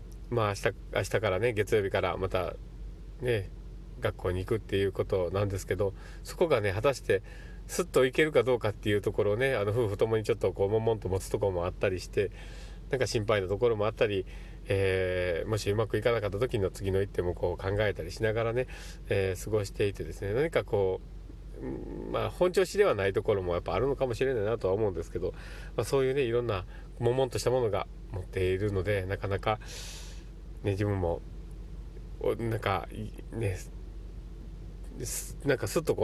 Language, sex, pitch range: Japanese, male, 95-125 Hz